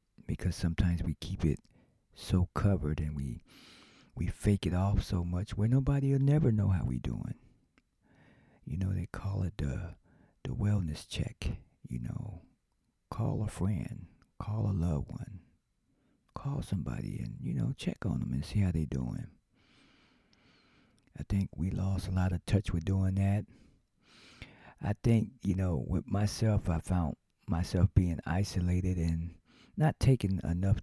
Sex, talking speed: male, 155 wpm